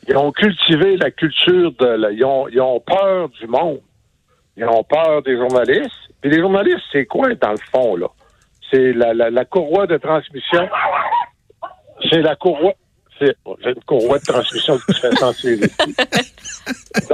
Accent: French